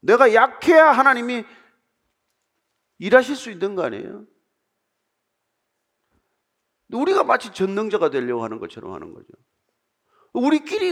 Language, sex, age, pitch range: Korean, male, 40-59, 160-260 Hz